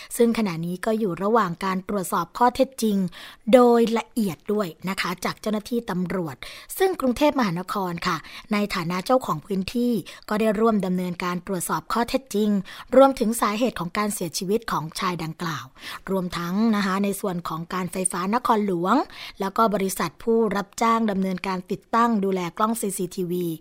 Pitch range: 185-230 Hz